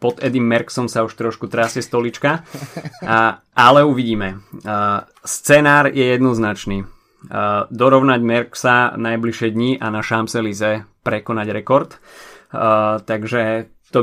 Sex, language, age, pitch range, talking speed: male, Slovak, 20-39, 110-125 Hz, 120 wpm